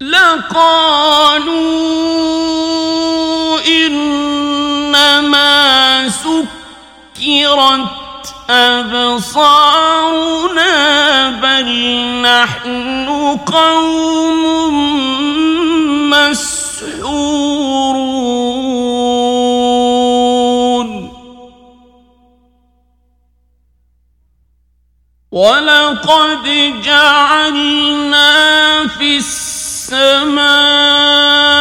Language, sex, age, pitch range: Arabic, male, 50-69, 250-295 Hz